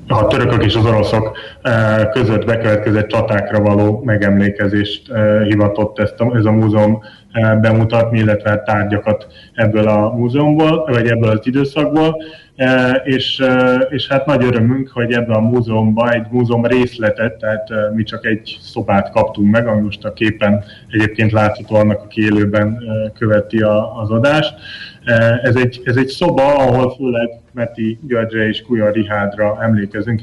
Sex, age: male, 20-39